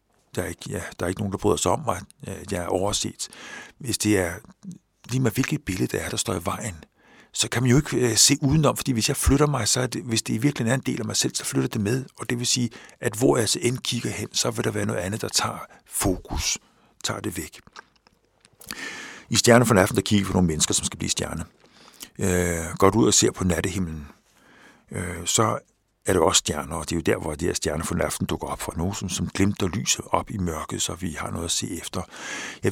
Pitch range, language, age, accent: 95-125 Hz, Danish, 60-79, native